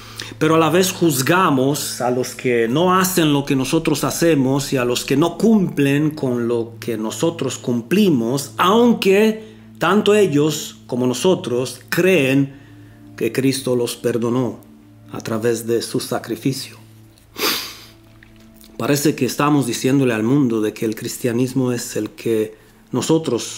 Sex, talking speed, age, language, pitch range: male, 135 wpm, 40-59, Romanian, 110-140 Hz